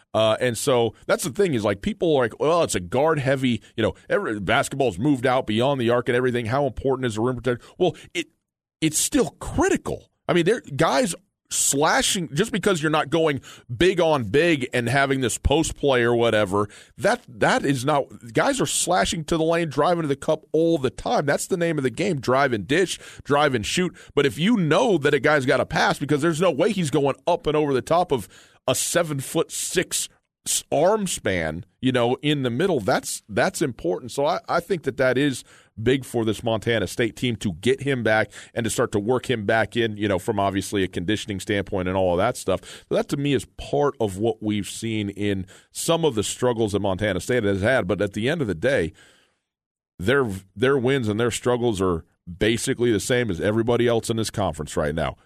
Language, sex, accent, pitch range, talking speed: English, male, American, 110-150 Hz, 225 wpm